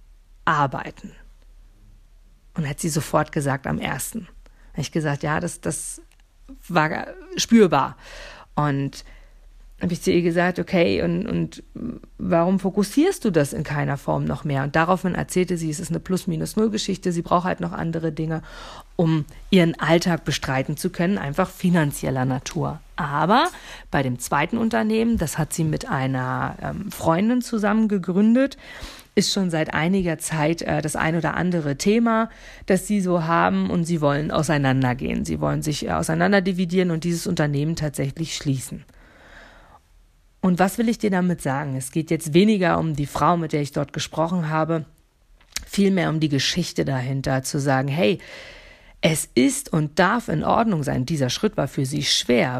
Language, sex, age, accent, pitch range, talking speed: German, female, 50-69, German, 140-190 Hz, 160 wpm